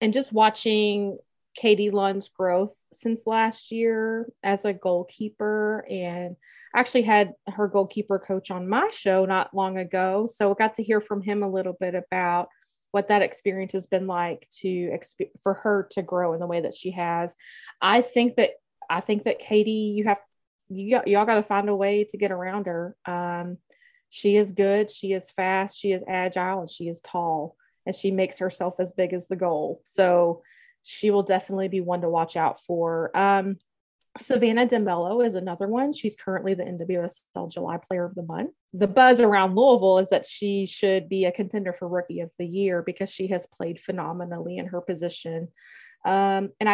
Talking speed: 185 wpm